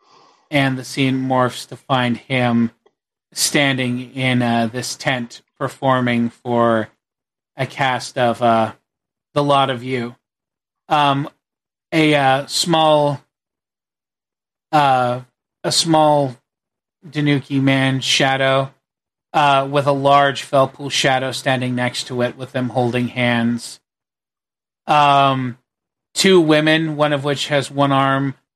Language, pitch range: English, 125-140 Hz